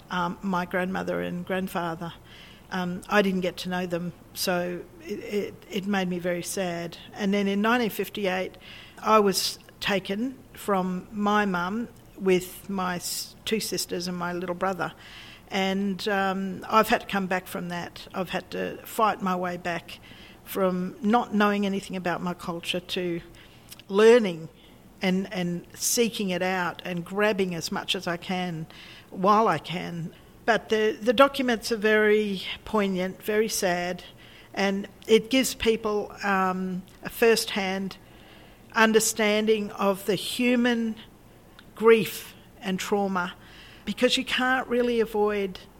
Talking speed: 140 wpm